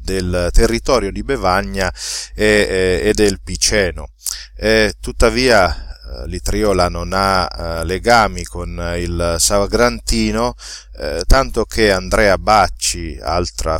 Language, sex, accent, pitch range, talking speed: Italian, male, native, 85-105 Hz, 110 wpm